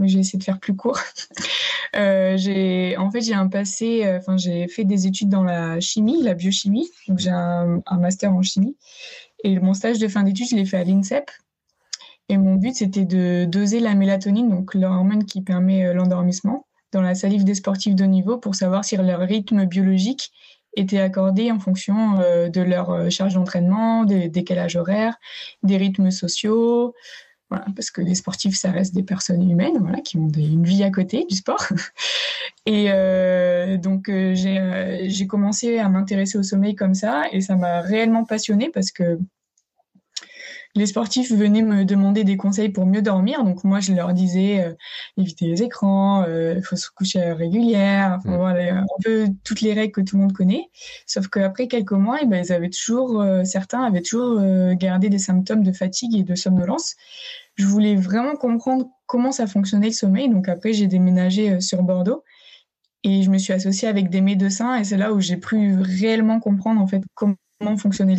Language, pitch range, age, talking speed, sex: French, 185-220 Hz, 20-39, 190 wpm, female